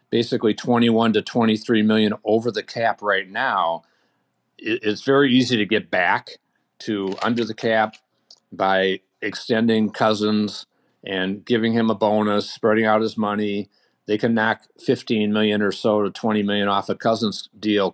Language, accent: English, American